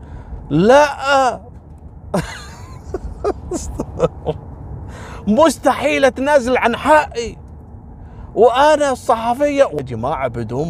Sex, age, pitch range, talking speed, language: male, 30-49, 110-170 Hz, 55 wpm, Arabic